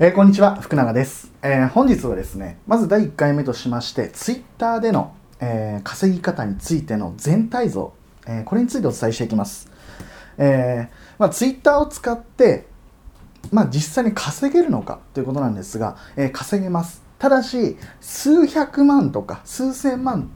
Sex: male